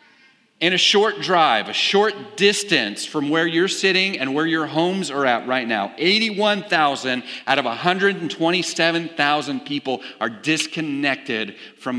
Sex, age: male, 40-59